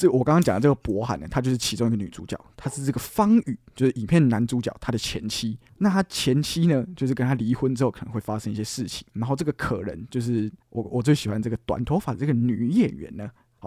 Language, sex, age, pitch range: Chinese, male, 20-39, 115-145 Hz